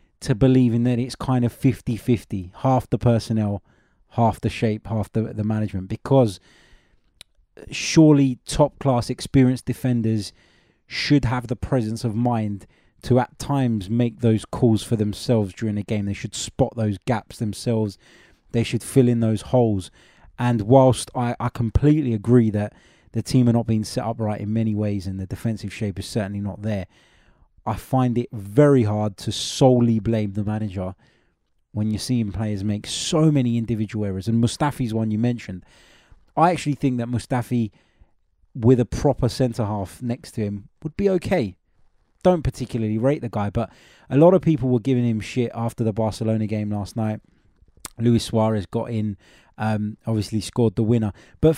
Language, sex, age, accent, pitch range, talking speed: English, male, 20-39, British, 105-125 Hz, 170 wpm